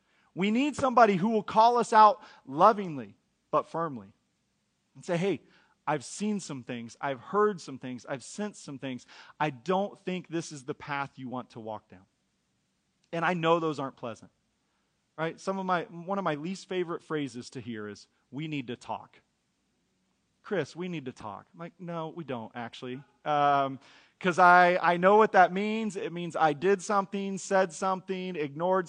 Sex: male